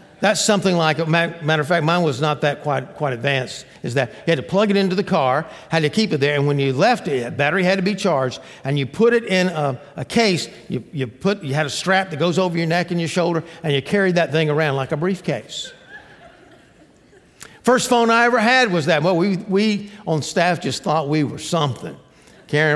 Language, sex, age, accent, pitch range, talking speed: English, male, 50-69, American, 145-190 Hz, 235 wpm